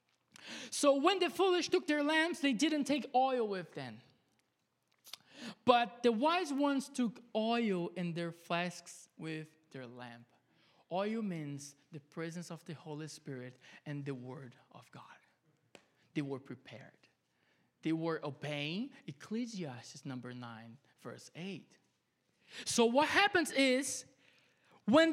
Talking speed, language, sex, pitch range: 130 wpm, English, male, 215-315 Hz